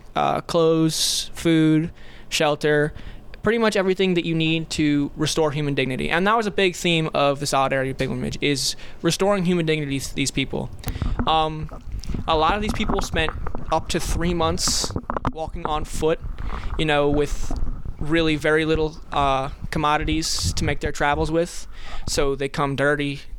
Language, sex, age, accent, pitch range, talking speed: English, male, 20-39, American, 135-160 Hz, 160 wpm